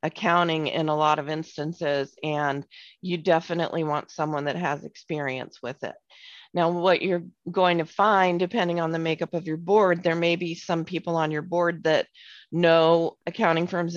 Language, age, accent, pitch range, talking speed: English, 40-59, American, 150-170 Hz, 175 wpm